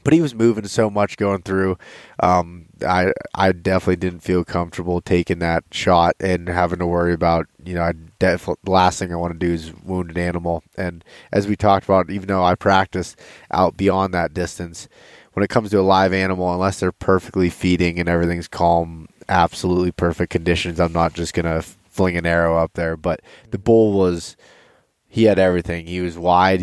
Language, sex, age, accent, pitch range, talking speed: English, male, 20-39, American, 85-95 Hz, 200 wpm